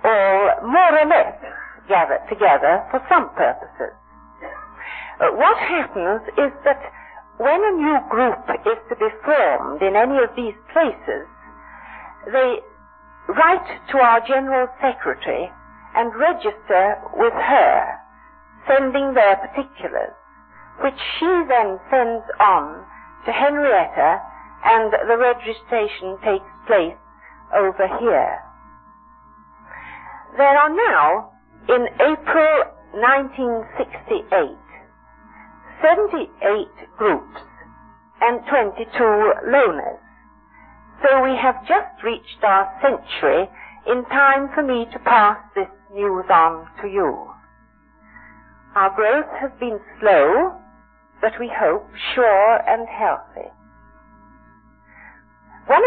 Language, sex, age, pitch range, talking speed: English, female, 60-79, 220-325 Hz, 100 wpm